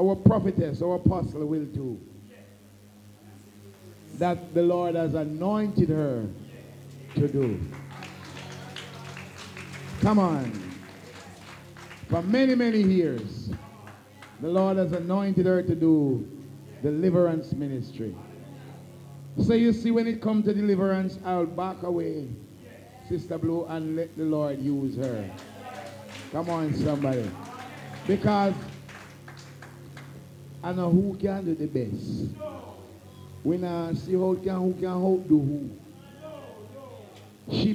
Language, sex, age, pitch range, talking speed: English, male, 50-69, 125-205 Hz, 110 wpm